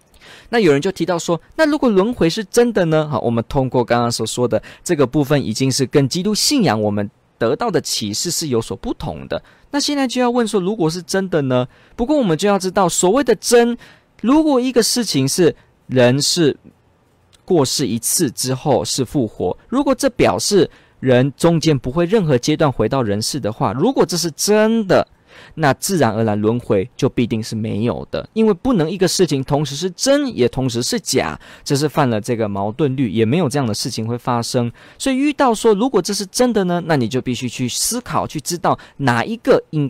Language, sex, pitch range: Chinese, male, 125-195 Hz